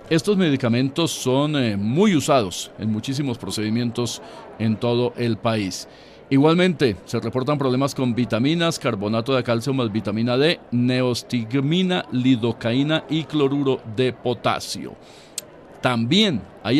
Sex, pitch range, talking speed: male, 115-150 Hz, 120 wpm